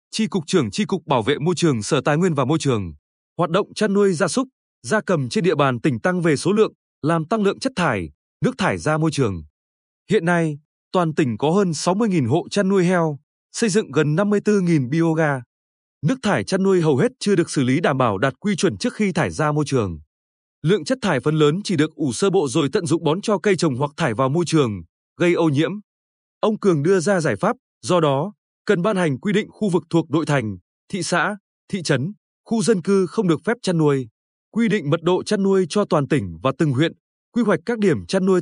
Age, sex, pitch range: 20-39, male, 150-200 Hz